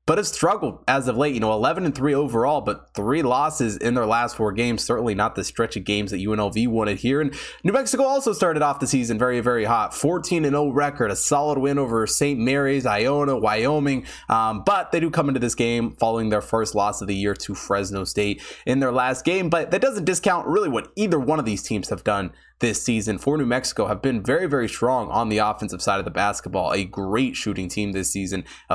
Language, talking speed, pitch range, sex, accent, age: English, 225 wpm, 110-140 Hz, male, American, 20-39